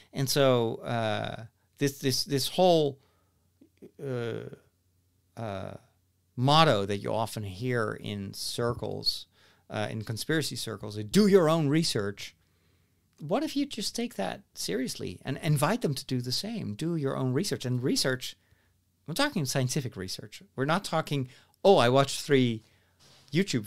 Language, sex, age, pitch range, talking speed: English, male, 40-59, 105-150 Hz, 140 wpm